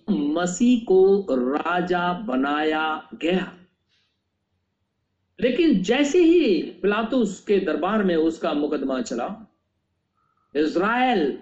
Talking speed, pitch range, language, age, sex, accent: 85 wpm, 135-225 Hz, Hindi, 50-69, male, native